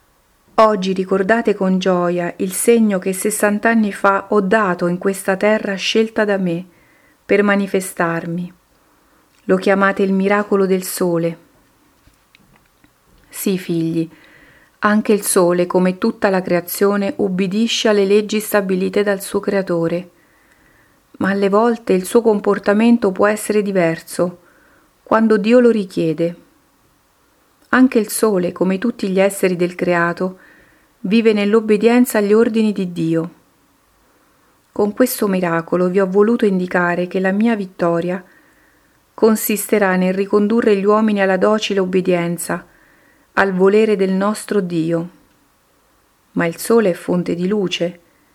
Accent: native